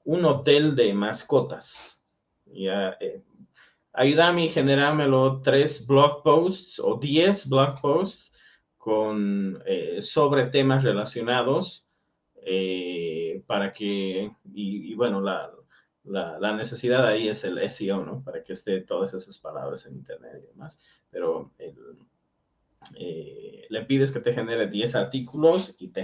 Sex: male